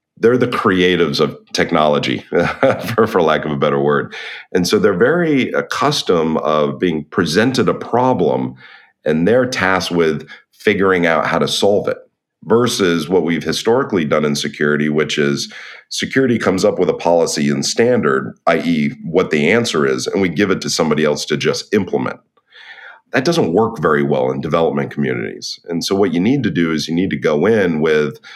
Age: 40-59